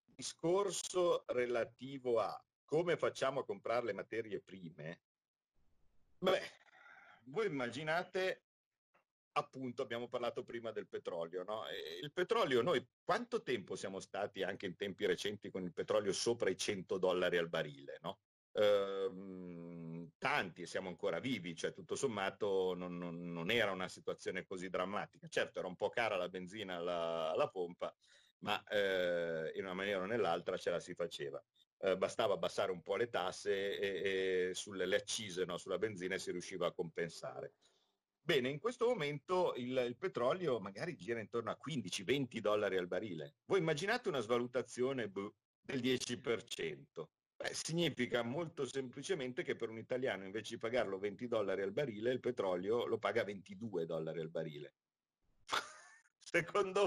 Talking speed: 145 wpm